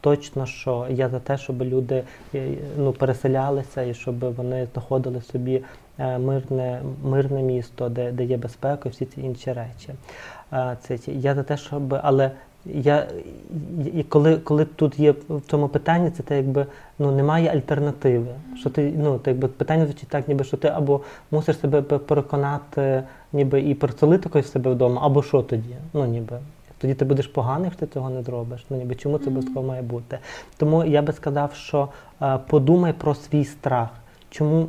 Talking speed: 170 wpm